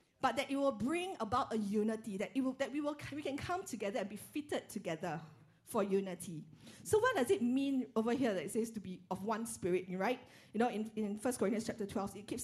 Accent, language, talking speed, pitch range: Malaysian, English, 240 wpm, 195-265 Hz